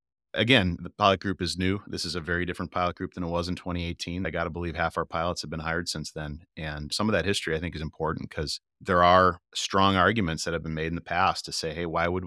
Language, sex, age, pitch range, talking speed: English, male, 30-49, 80-95 Hz, 275 wpm